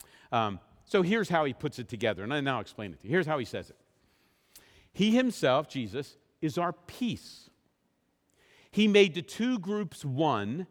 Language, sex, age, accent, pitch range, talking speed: English, male, 50-69, American, 145-210 Hz, 175 wpm